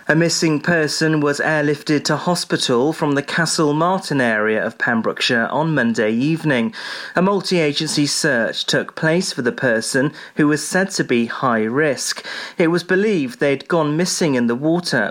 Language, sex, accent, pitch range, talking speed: English, male, British, 125-165 Hz, 165 wpm